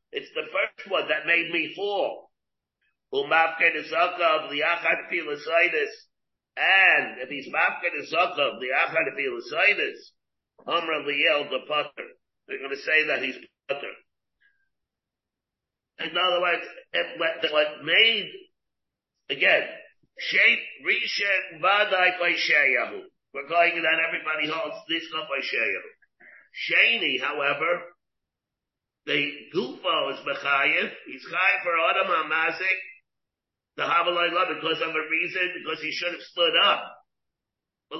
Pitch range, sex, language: 160-210 Hz, male, English